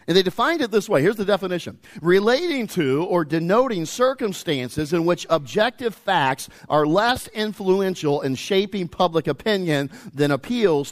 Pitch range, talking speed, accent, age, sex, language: 120-165 Hz, 150 wpm, American, 50-69, male, English